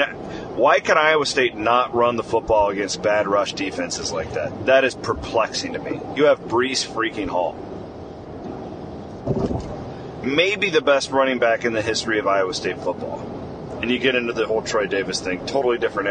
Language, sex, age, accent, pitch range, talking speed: English, male, 30-49, American, 100-130 Hz, 175 wpm